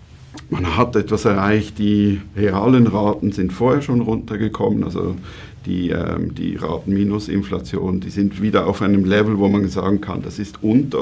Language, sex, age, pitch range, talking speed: German, male, 50-69, 95-110 Hz, 160 wpm